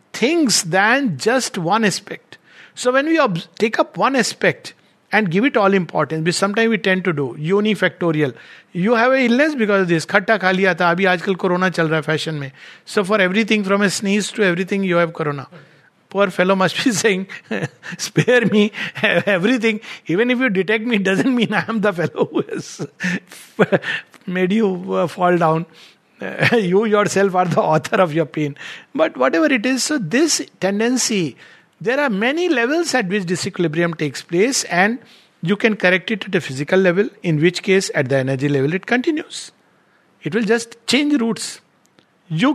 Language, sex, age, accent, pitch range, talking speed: English, male, 60-79, Indian, 170-230 Hz, 175 wpm